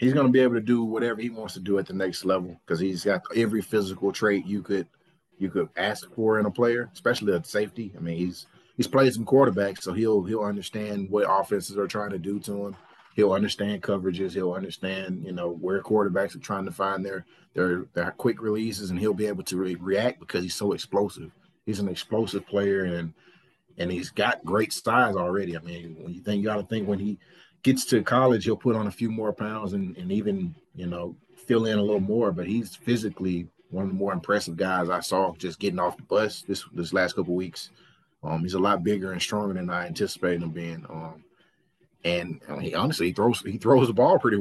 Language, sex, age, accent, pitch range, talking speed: English, male, 30-49, American, 90-115 Hz, 230 wpm